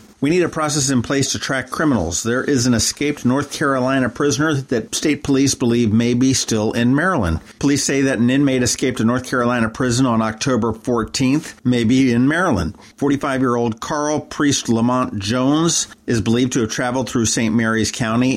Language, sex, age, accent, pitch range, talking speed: English, male, 50-69, American, 110-135 Hz, 185 wpm